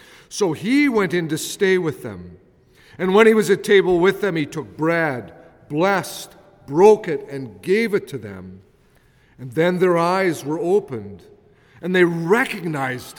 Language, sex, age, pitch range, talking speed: English, male, 50-69, 145-200 Hz, 165 wpm